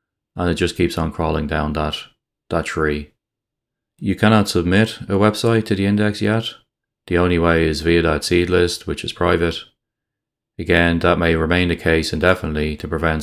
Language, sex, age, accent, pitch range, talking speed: English, male, 20-39, Irish, 75-85 Hz, 175 wpm